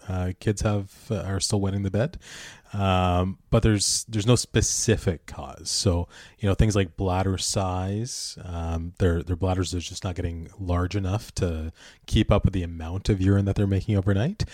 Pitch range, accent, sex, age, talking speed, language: 85-105 Hz, American, male, 30-49, 185 wpm, English